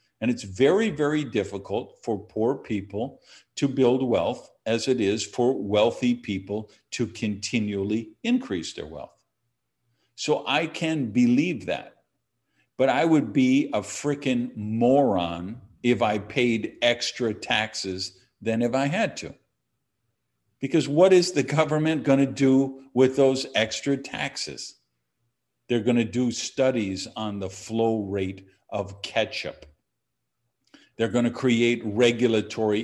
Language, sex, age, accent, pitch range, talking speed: English, male, 50-69, American, 105-135 Hz, 130 wpm